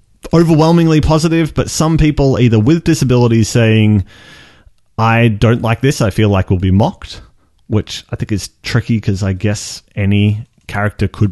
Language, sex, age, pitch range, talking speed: English, male, 30-49, 100-125 Hz, 165 wpm